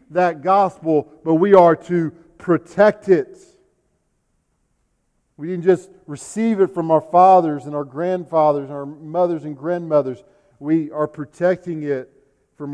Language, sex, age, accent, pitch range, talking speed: English, male, 50-69, American, 140-190 Hz, 135 wpm